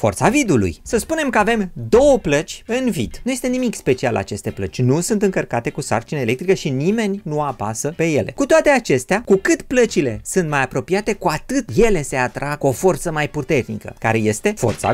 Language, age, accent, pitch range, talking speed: Romanian, 30-49, native, 130-195 Hz, 195 wpm